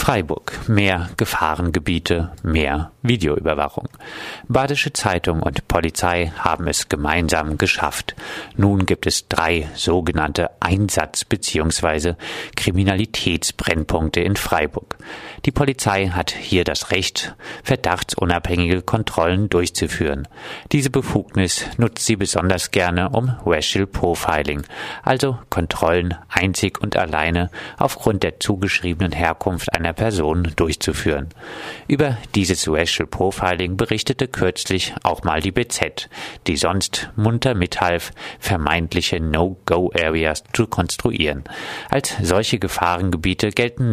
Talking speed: 100 wpm